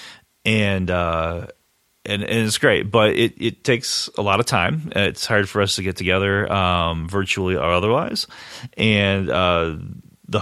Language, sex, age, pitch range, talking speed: English, male, 30-49, 90-120 Hz, 160 wpm